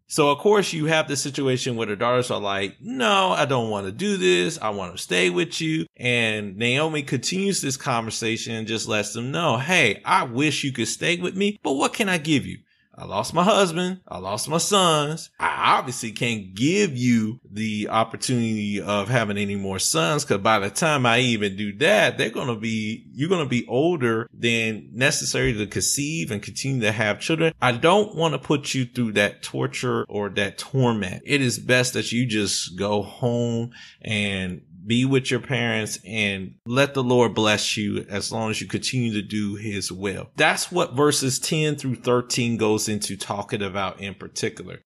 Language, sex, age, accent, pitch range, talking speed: English, male, 30-49, American, 105-145 Hz, 195 wpm